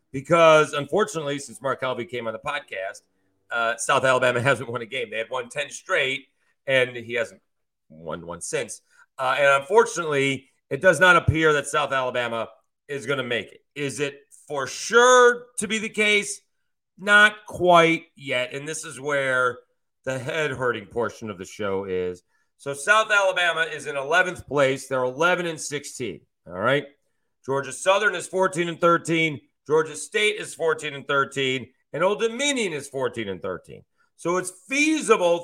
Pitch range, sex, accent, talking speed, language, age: 135-200 Hz, male, American, 170 wpm, English, 40-59